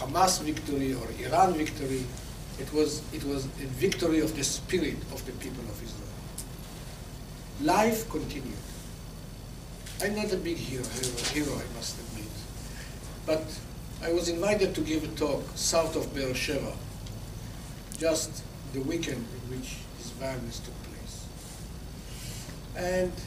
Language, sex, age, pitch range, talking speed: English, male, 60-79, 130-165 Hz, 135 wpm